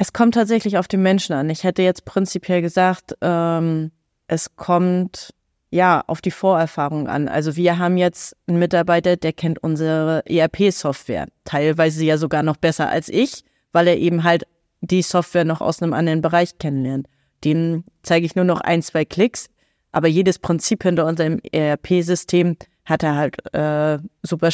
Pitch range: 155-180 Hz